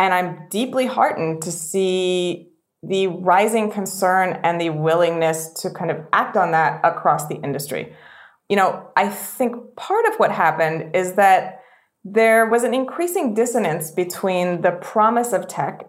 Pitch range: 165-195 Hz